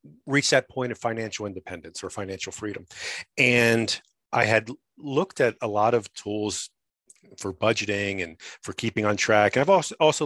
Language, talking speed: English, 170 wpm